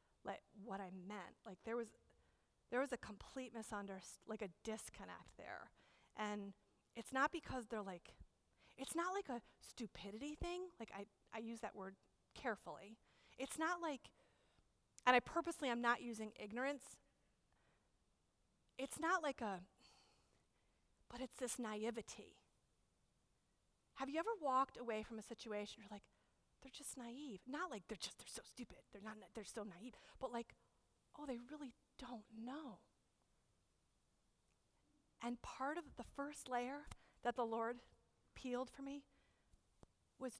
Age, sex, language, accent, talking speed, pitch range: 30-49, female, English, American, 145 wpm, 210-275 Hz